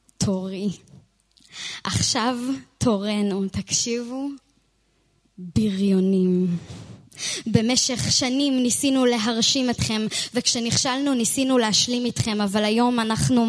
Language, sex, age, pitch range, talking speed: Hebrew, female, 20-39, 210-255 Hz, 75 wpm